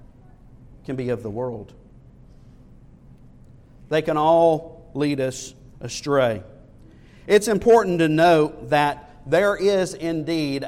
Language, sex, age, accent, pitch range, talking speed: English, male, 50-69, American, 130-165 Hz, 100 wpm